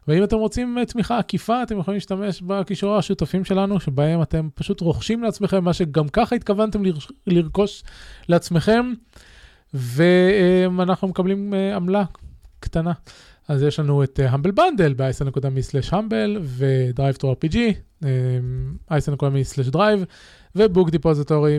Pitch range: 145-200 Hz